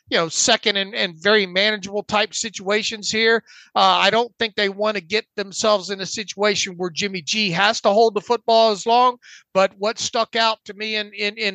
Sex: male